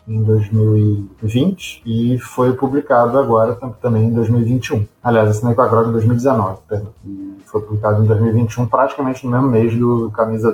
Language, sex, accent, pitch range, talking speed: Portuguese, male, Brazilian, 110-135 Hz, 160 wpm